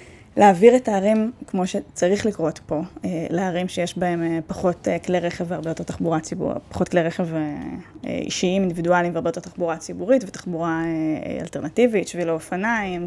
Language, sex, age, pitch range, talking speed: Hebrew, female, 20-39, 175-220 Hz, 140 wpm